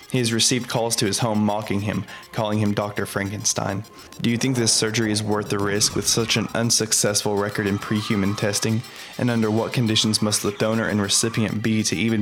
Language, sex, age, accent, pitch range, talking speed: English, male, 20-39, American, 100-115 Hz, 205 wpm